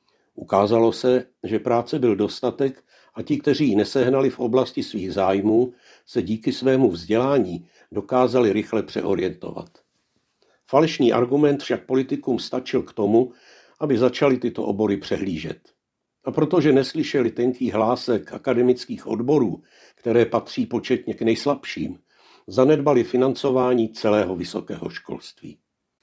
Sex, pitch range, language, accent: male, 110-130 Hz, Czech, native